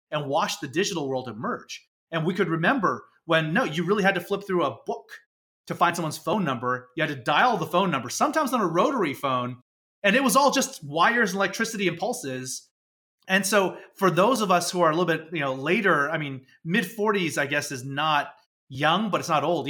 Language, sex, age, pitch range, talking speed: English, male, 30-49, 140-190 Hz, 225 wpm